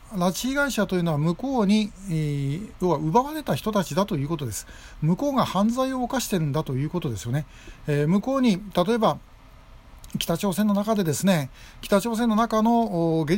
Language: Japanese